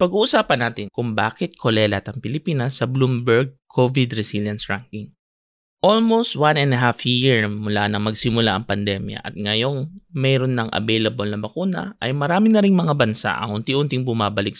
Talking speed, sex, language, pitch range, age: 160 wpm, male, English, 110-150 Hz, 20-39